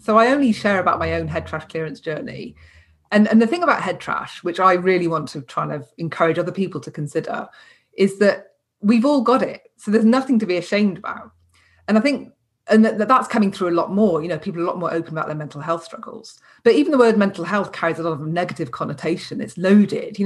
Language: English